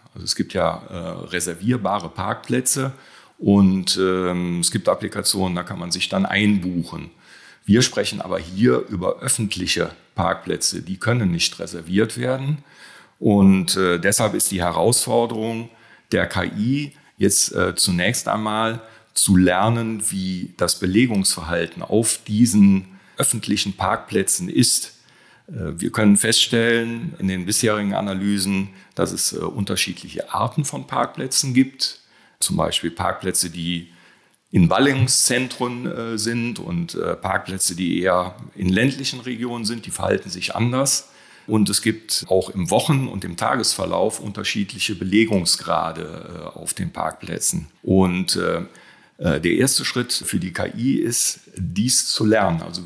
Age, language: 40-59, German